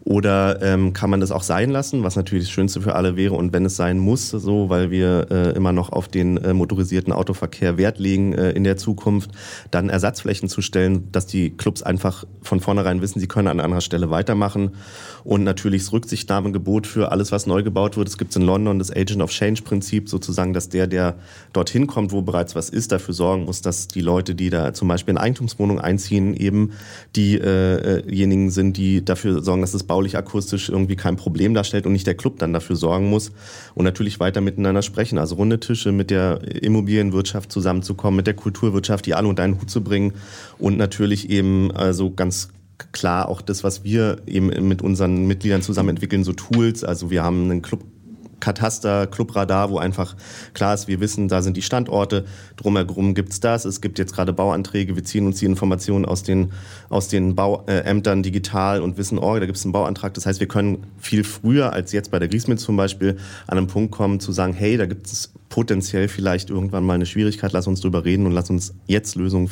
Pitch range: 95-100 Hz